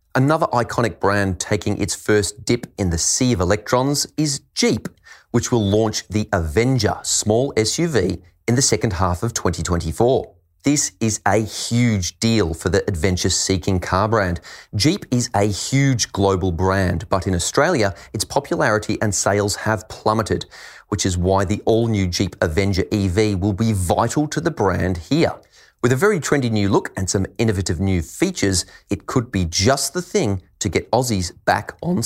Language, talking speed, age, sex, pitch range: English, 165 wpm, 30-49, male, 95-120 Hz